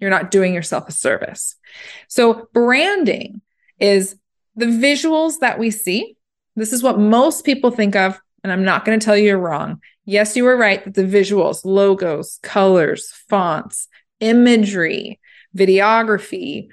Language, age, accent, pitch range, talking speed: English, 20-39, American, 195-245 Hz, 145 wpm